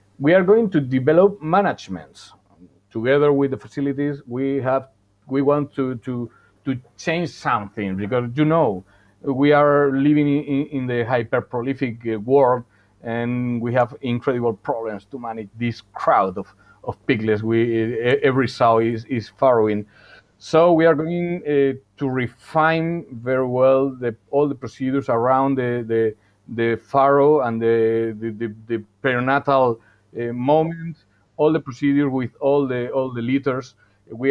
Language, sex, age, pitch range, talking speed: English, male, 40-59, 110-140 Hz, 150 wpm